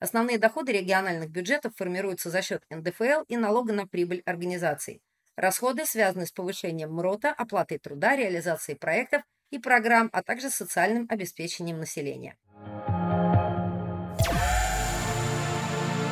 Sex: female